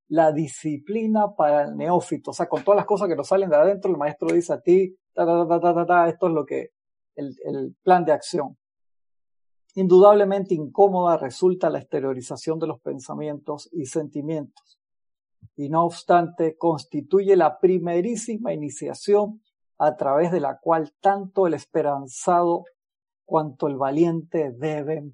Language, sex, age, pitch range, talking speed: Spanish, male, 50-69, 150-185 Hz, 140 wpm